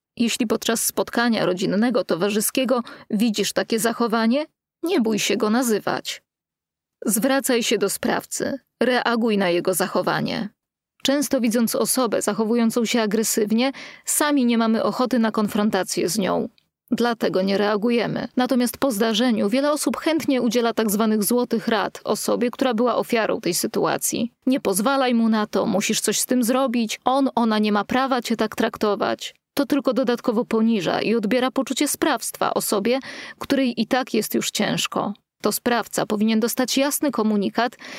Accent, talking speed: native, 145 wpm